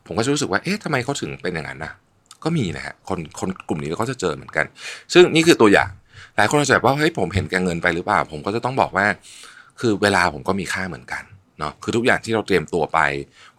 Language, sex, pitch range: Thai, male, 85-125 Hz